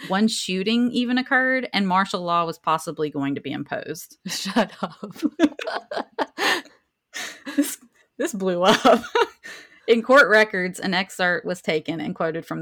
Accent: American